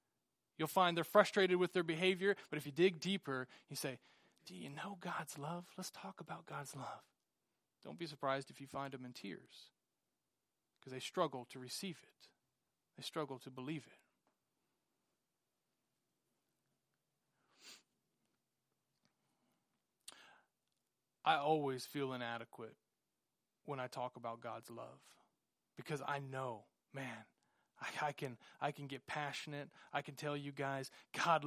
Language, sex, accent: English, male, American